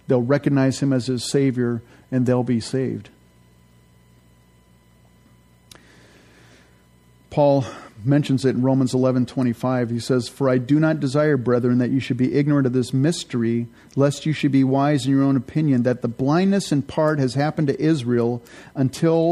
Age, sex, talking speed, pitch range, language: 50-69, male, 160 wpm, 120-145 Hz, English